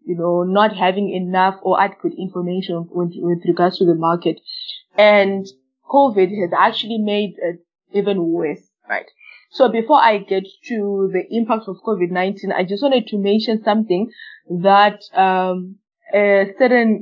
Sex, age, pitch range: female, 20-39, 185-225 Hz